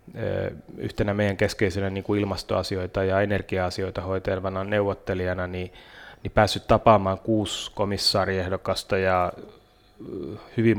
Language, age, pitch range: Finnish, 30-49, 95-105 Hz